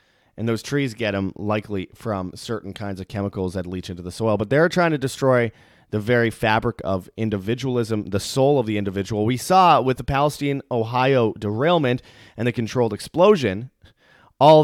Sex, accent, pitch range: male, American, 100-125 Hz